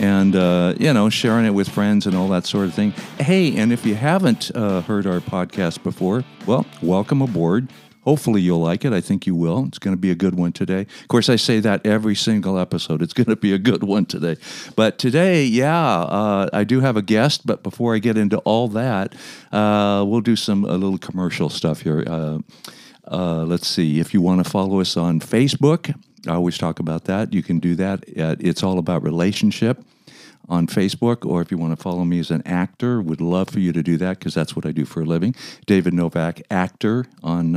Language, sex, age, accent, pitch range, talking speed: English, male, 60-79, American, 90-115 Hz, 225 wpm